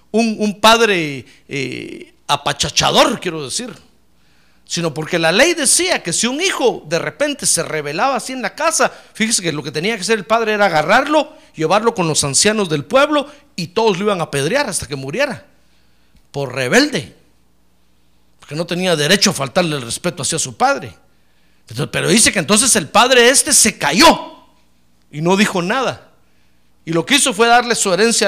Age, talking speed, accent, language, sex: 50-69, 180 wpm, Mexican, Spanish, male